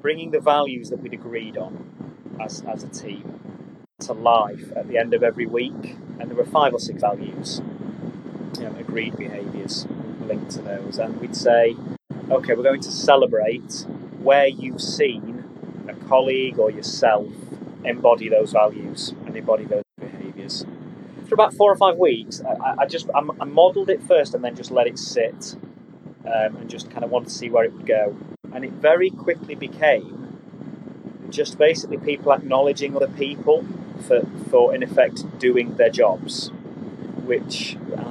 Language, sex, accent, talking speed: English, male, British, 165 wpm